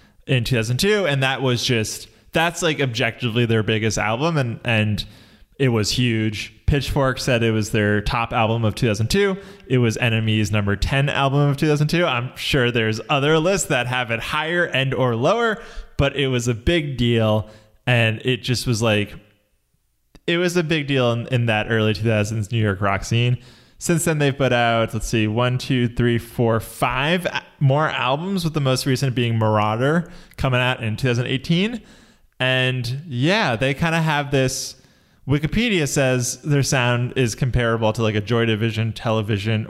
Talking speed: 170 wpm